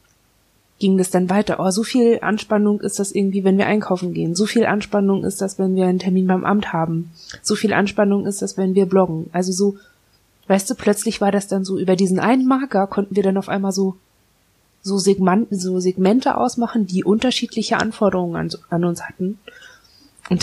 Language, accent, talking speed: German, German, 195 wpm